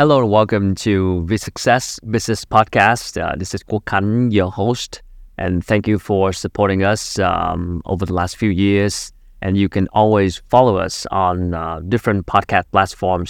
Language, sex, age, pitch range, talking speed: Vietnamese, male, 30-49, 90-110 Hz, 170 wpm